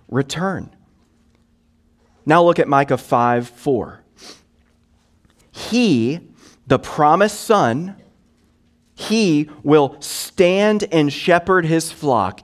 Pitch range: 105-165 Hz